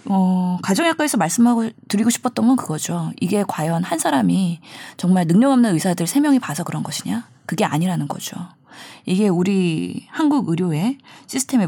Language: Korean